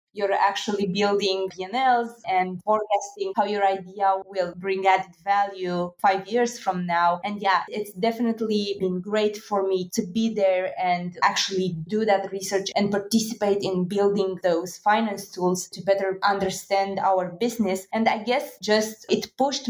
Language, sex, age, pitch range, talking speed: English, female, 20-39, 190-220 Hz, 155 wpm